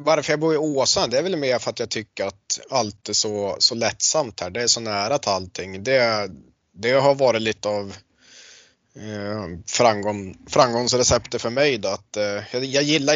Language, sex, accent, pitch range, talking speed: Swedish, male, native, 105-130 Hz, 190 wpm